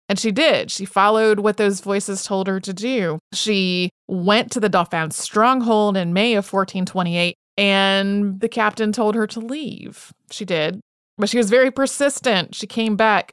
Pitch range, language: 195-245 Hz, English